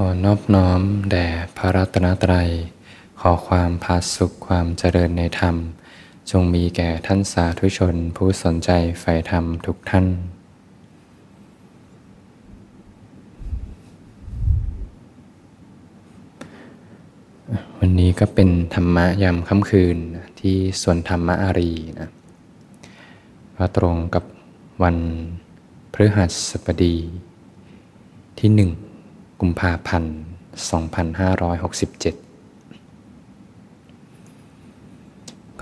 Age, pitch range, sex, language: 20-39, 85-95 Hz, male, Thai